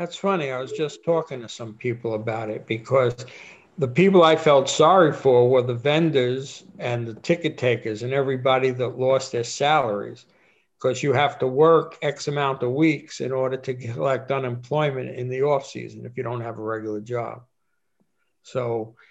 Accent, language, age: American, English, 60-79